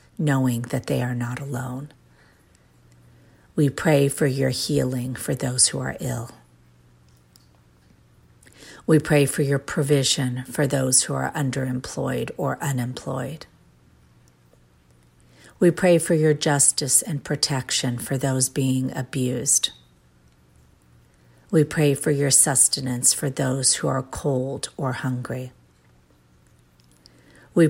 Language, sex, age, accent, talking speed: English, female, 50-69, American, 115 wpm